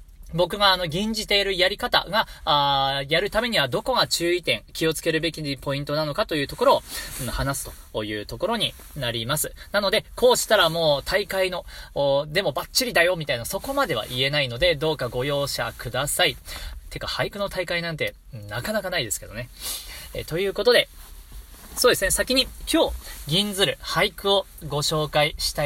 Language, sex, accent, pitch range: Japanese, male, native, 115-185 Hz